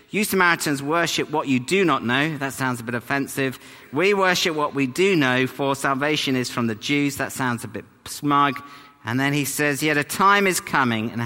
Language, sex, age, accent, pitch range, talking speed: English, male, 50-69, British, 110-150 Hz, 215 wpm